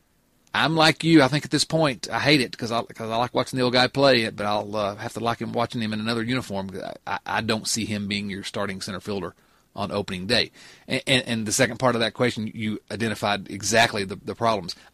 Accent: American